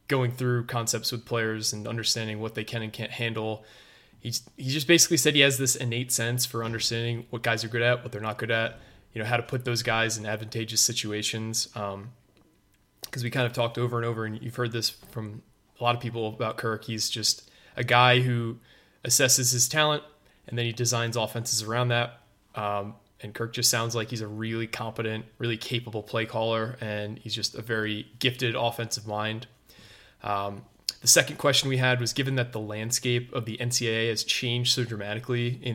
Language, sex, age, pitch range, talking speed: English, male, 20-39, 110-125 Hz, 205 wpm